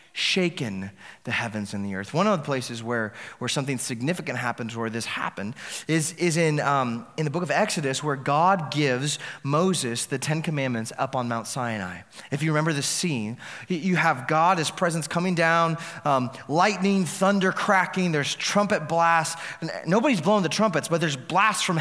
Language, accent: English, American